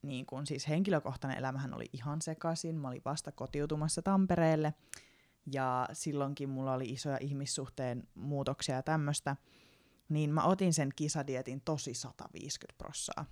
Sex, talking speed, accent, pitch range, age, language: female, 135 wpm, native, 135-160 Hz, 20-39, Finnish